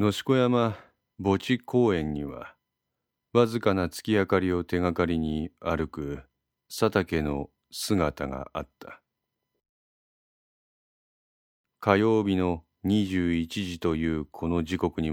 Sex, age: male, 40-59